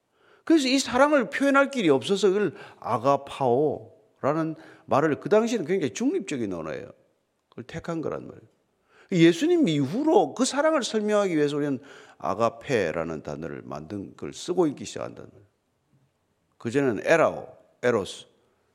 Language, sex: Korean, male